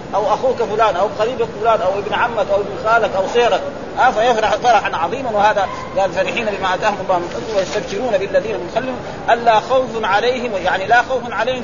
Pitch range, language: 205-255 Hz, Arabic